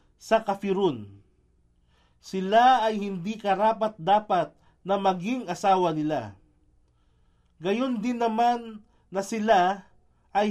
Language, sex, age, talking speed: Filipino, male, 40-59, 90 wpm